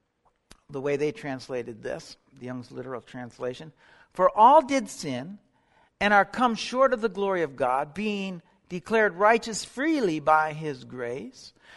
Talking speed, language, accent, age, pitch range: 150 wpm, English, American, 60-79, 155-215 Hz